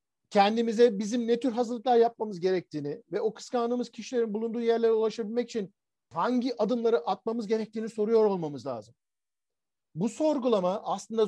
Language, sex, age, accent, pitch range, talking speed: Turkish, male, 50-69, native, 175-245 Hz, 135 wpm